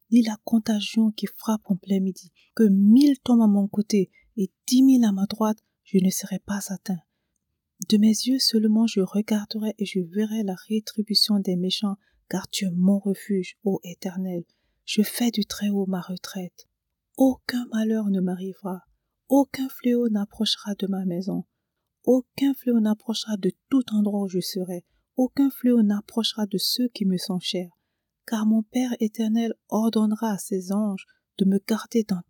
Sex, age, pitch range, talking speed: female, 40-59, 195-230 Hz, 170 wpm